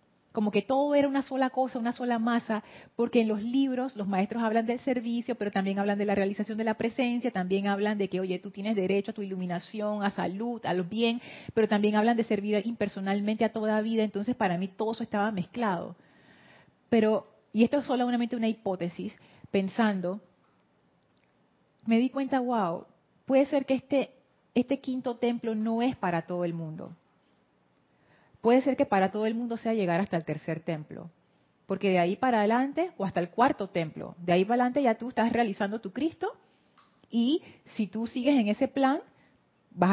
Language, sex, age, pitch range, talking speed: Spanish, female, 30-49, 190-245 Hz, 190 wpm